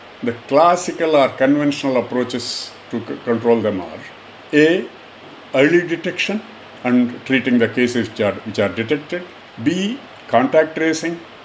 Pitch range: 115-160 Hz